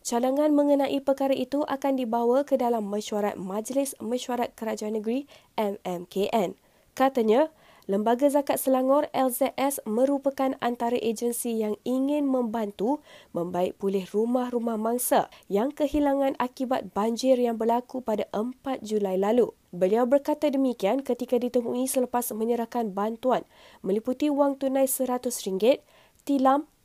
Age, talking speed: 20-39, 115 wpm